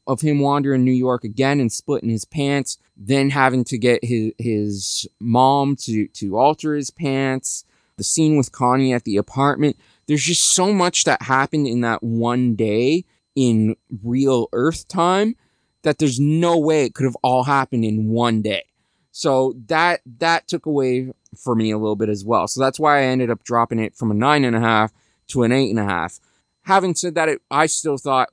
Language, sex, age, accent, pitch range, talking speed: English, male, 20-39, American, 115-145 Hz, 200 wpm